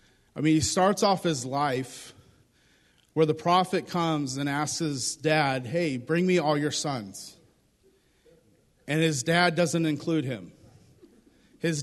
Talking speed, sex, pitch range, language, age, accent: 140 wpm, male, 135-170 Hz, English, 40-59, American